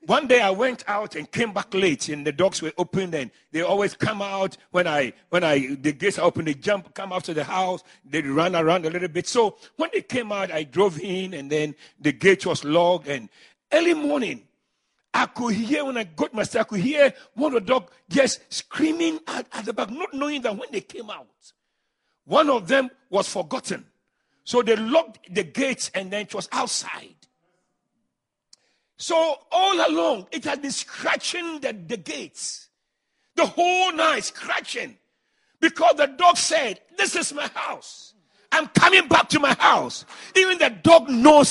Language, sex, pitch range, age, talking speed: English, male, 190-310 Hz, 50-69, 190 wpm